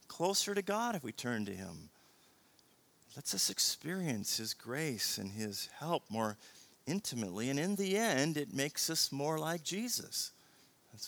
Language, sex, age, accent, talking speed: English, male, 40-59, American, 155 wpm